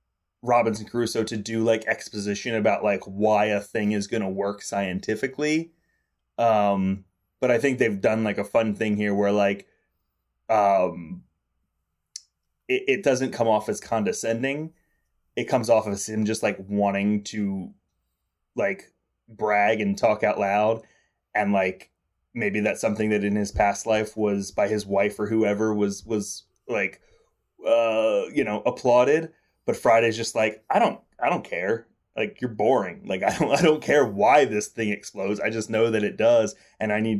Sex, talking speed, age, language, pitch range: male, 170 wpm, 20-39, English, 100-115 Hz